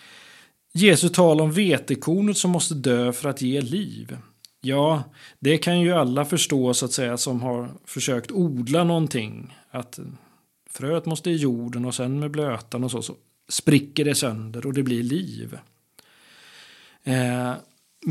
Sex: male